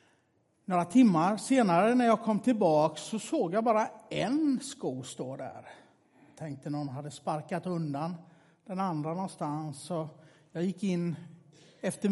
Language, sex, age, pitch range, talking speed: Swedish, male, 60-79, 145-200 Hz, 140 wpm